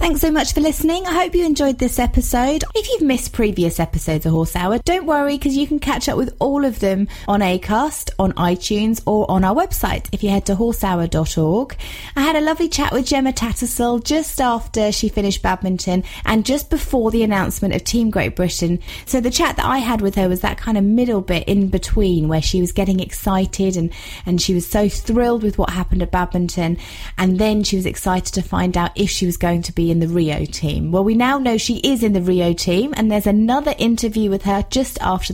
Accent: British